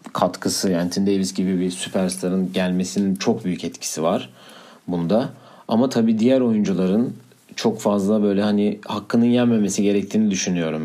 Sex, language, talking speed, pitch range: male, Turkish, 140 wpm, 95-110 Hz